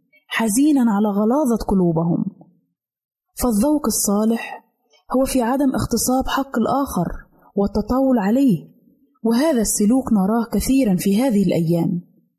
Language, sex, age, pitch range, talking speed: Arabic, female, 20-39, 195-245 Hz, 100 wpm